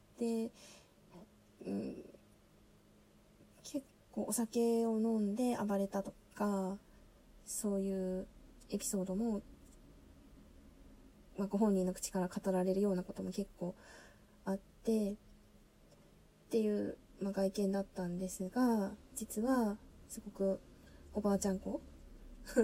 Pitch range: 190-230 Hz